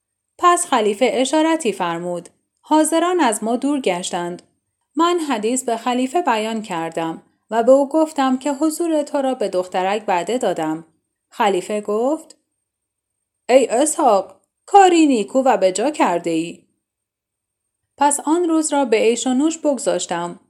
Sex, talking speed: female, 130 wpm